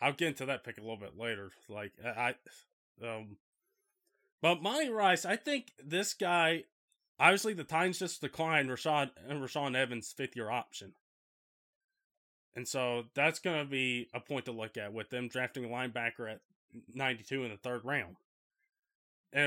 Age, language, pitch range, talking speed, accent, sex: 20-39, English, 125-185 Hz, 165 wpm, American, male